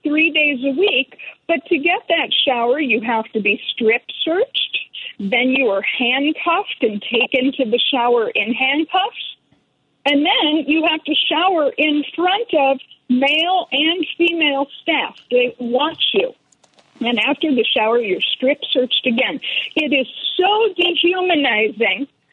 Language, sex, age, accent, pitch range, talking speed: English, female, 50-69, American, 250-325 Hz, 140 wpm